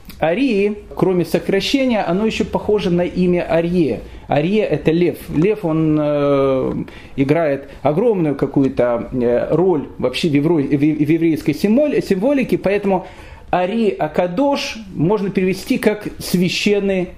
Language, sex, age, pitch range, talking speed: Russian, male, 40-59, 145-200 Hz, 115 wpm